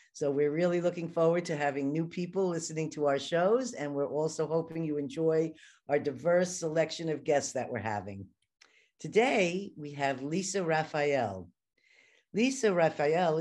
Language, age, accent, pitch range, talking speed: English, 50-69, American, 130-175 Hz, 150 wpm